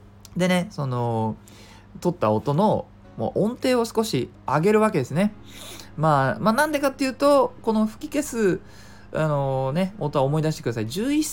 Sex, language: male, Japanese